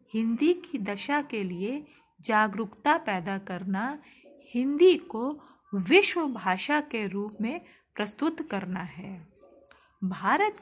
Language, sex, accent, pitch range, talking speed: Hindi, female, native, 195-290 Hz, 105 wpm